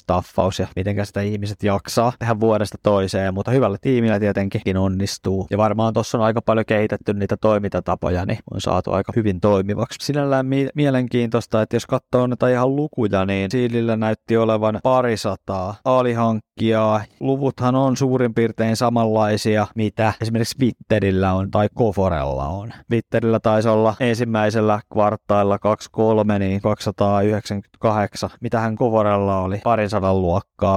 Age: 20-39